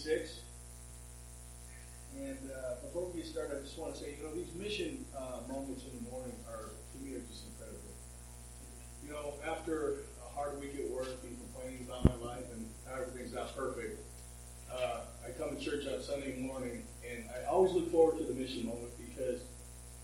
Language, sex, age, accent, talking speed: English, male, 50-69, American, 185 wpm